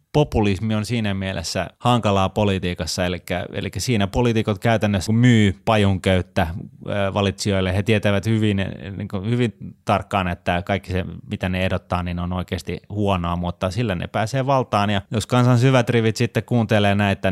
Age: 30-49